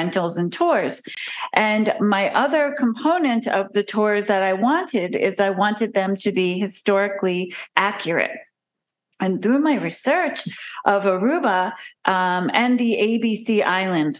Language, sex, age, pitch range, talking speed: English, female, 40-59, 180-225 Hz, 135 wpm